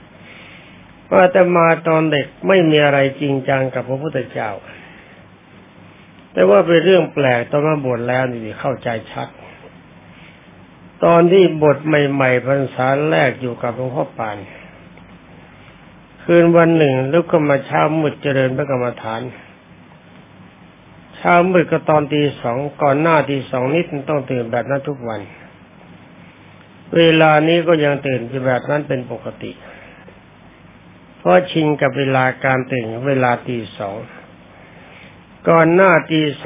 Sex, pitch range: male, 130-160 Hz